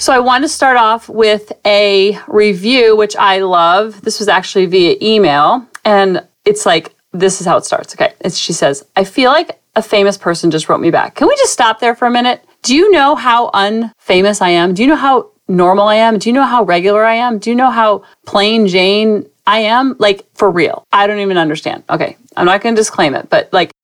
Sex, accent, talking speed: female, American, 230 wpm